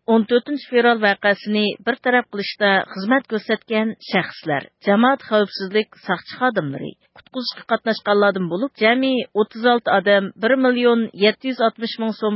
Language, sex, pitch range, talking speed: English, female, 195-240 Hz, 105 wpm